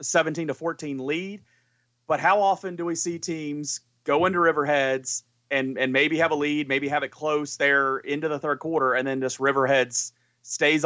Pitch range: 130-155 Hz